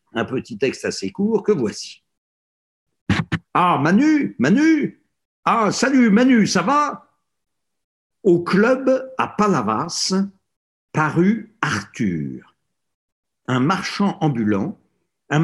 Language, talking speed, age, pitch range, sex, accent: French, 95 wpm, 60-79, 125-205 Hz, male, French